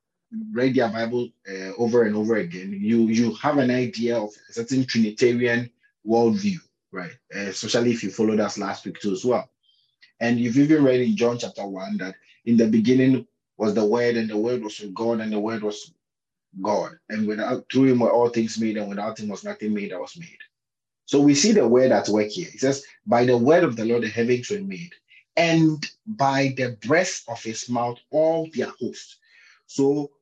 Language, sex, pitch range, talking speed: English, male, 115-150 Hz, 205 wpm